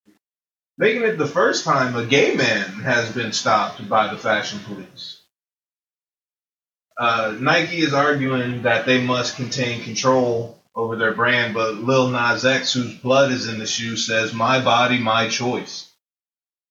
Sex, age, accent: male, 30-49, American